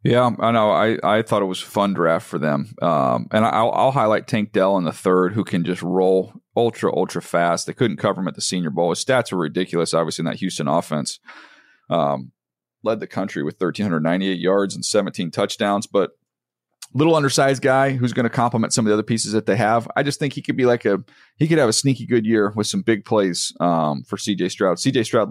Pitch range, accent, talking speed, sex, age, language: 95-125 Hz, American, 230 wpm, male, 40-59, English